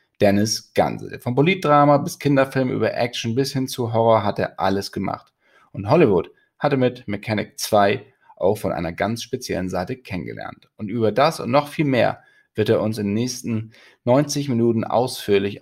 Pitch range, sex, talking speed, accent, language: 105-130 Hz, male, 175 wpm, German, German